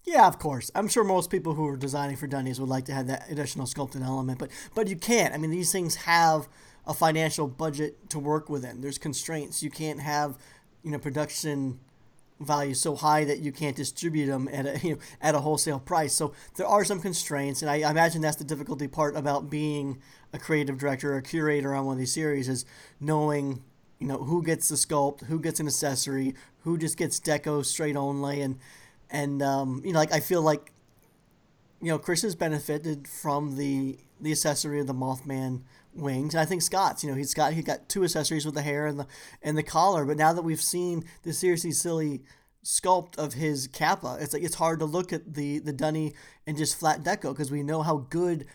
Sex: male